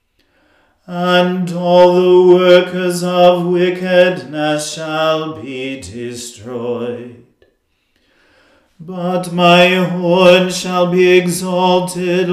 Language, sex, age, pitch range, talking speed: English, male, 40-59, 175-180 Hz, 75 wpm